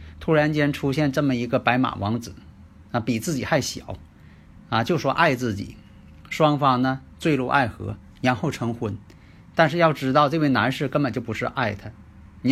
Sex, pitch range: male, 105-150 Hz